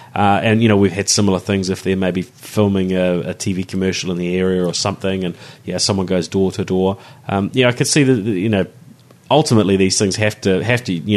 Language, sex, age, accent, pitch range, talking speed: English, male, 30-49, Australian, 95-115 Hz, 235 wpm